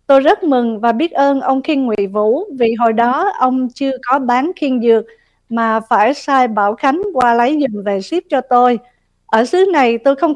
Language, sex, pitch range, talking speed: Vietnamese, female, 230-280 Hz, 210 wpm